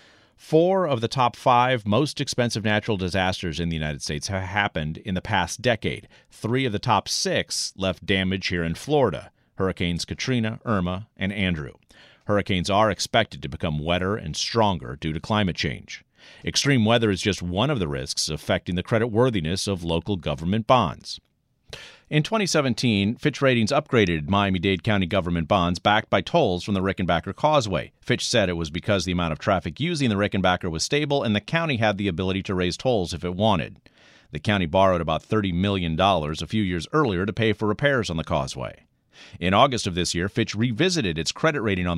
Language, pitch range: English, 90-115 Hz